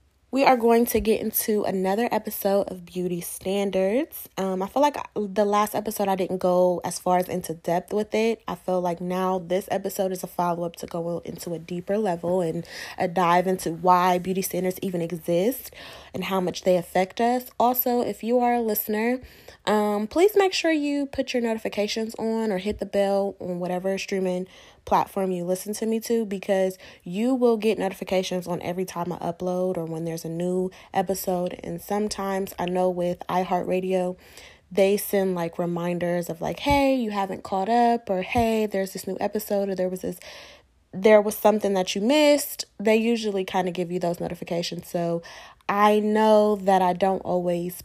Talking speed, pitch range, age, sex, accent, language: 190 wpm, 180-215 Hz, 10-29, female, American, English